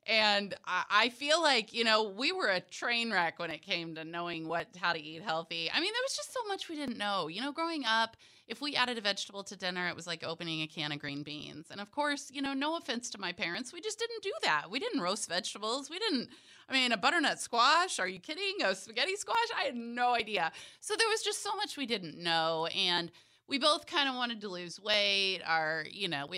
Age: 30-49